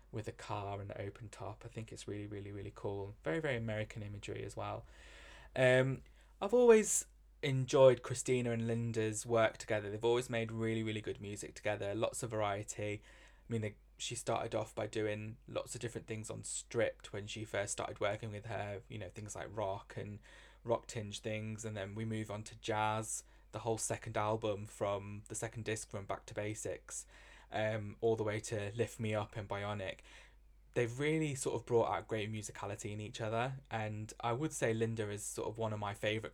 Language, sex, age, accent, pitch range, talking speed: English, male, 20-39, British, 105-115 Hz, 200 wpm